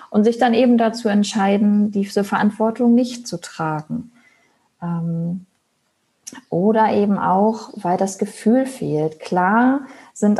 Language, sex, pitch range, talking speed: German, female, 180-220 Hz, 115 wpm